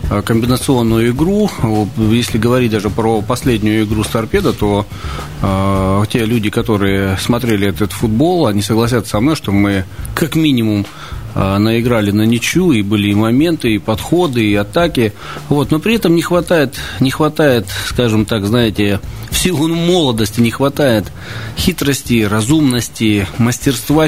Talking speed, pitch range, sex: 140 wpm, 105-135 Hz, male